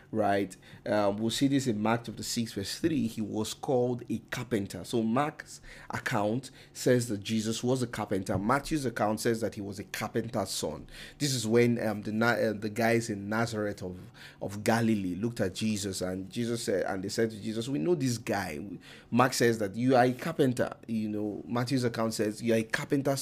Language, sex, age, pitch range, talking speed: English, male, 30-49, 105-120 Hz, 200 wpm